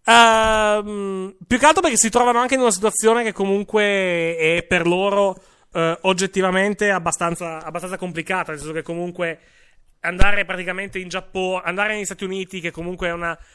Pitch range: 140-190 Hz